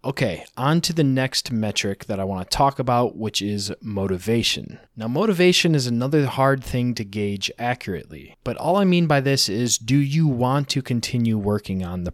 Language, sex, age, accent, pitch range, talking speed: English, male, 20-39, American, 110-145 Hz, 195 wpm